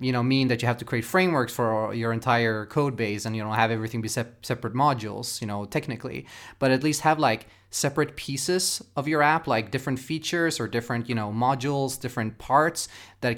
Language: English